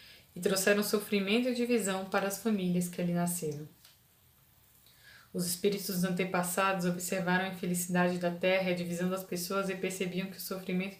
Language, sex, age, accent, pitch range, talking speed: Portuguese, female, 20-39, Brazilian, 175-210 Hz, 160 wpm